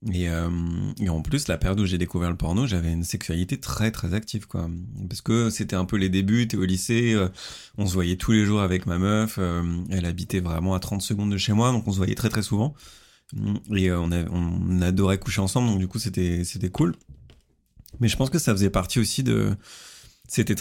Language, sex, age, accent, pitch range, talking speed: French, male, 20-39, French, 95-120 Hz, 235 wpm